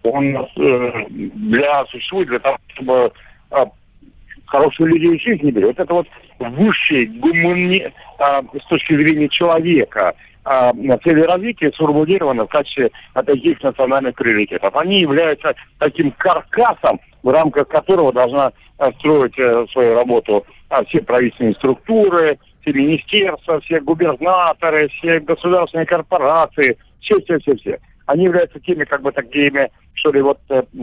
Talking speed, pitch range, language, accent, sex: 130 wpm, 130-175 Hz, Russian, native, male